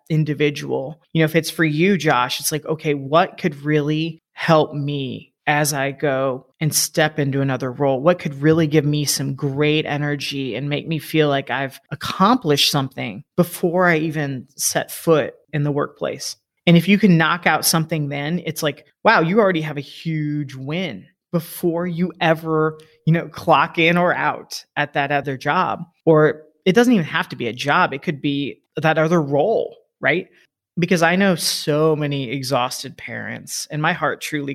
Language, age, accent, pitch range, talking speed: English, 30-49, American, 145-170 Hz, 180 wpm